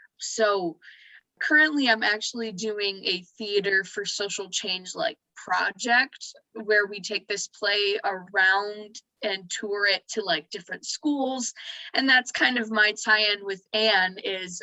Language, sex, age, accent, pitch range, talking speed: English, female, 20-39, American, 195-235 Hz, 140 wpm